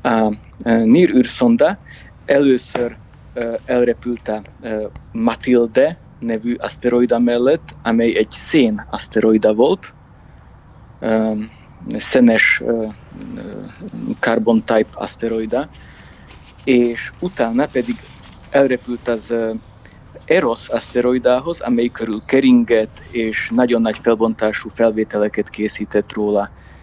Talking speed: 80 wpm